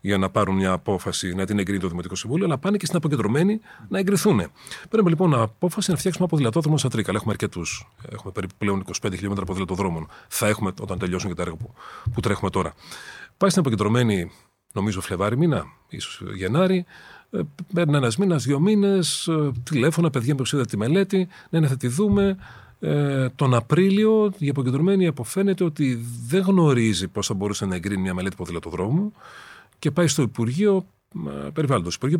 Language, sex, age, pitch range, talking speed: Greek, male, 40-59, 100-160 Hz, 160 wpm